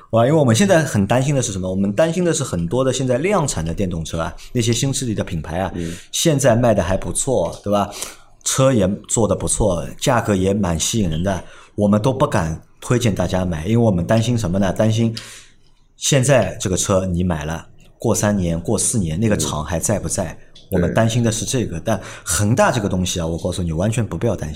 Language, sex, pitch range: Chinese, male, 95-125 Hz